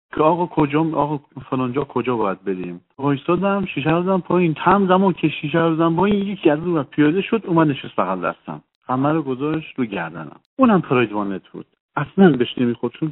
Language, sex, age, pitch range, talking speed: Persian, male, 50-69, 120-165 Hz, 185 wpm